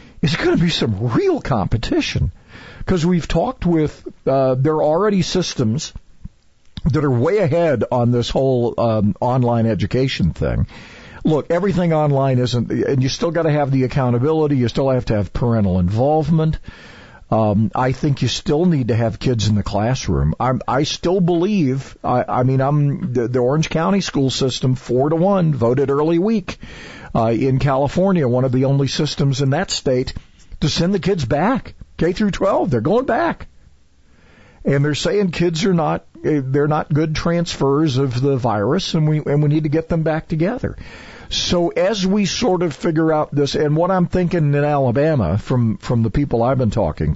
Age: 50-69